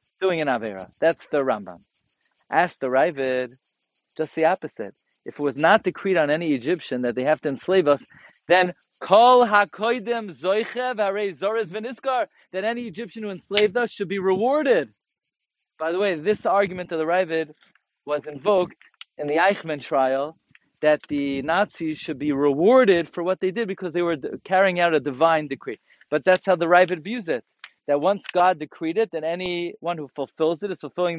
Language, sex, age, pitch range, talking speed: English, male, 40-59, 150-195 Hz, 175 wpm